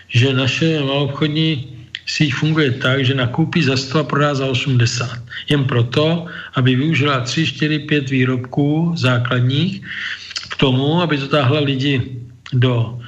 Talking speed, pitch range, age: 130 wpm, 125-145 Hz, 50-69